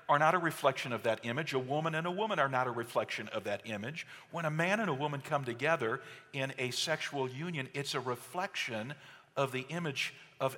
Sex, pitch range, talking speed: male, 130-160 Hz, 215 wpm